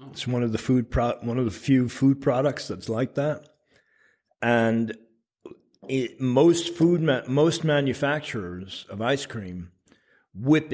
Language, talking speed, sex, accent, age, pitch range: German, 145 wpm, male, American, 50-69, 105-135 Hz